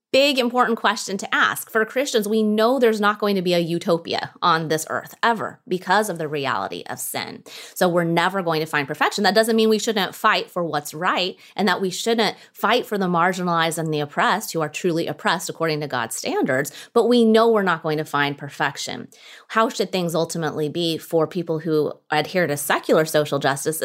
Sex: female